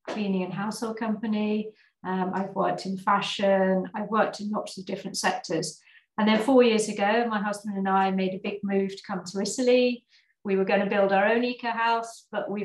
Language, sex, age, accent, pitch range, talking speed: English, female, 40-59, British, 185-210 Hz, 210 wpm